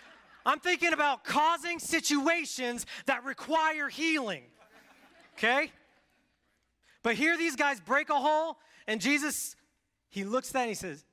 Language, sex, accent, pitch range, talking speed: English, male, American, 175-285 Hz, 135 wpm